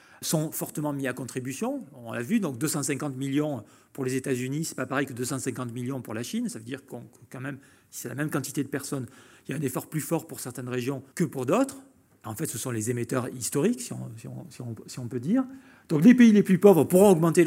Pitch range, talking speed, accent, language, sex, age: 130-175 Hz, 260 wpm, French, French, male, 40-59